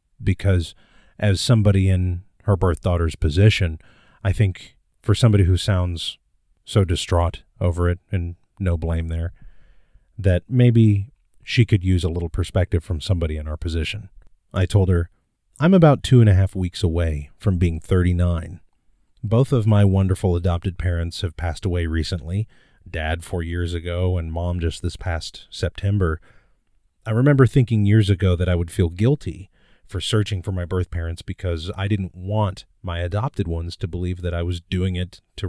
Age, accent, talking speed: 40-59, American, 170 wpm